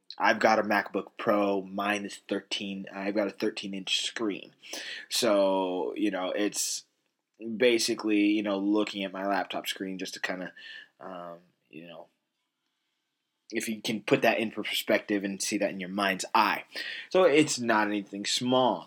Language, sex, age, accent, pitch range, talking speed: English, male, 20-39, American, 100-115 Hz, 160 wpm